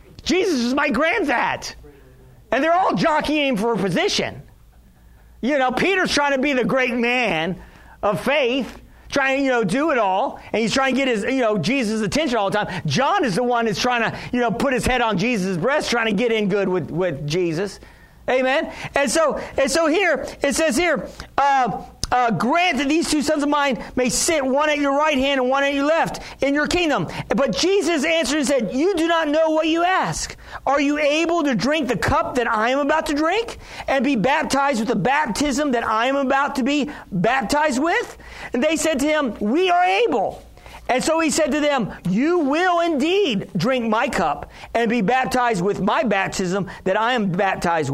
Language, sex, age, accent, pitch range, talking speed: English, male, 40-59, American, 220-300 Hz, 210 wpm